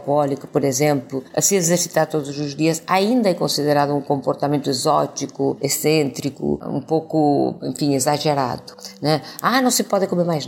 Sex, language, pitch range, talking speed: female, Portuguese, 145-190 Hz, 150 wpm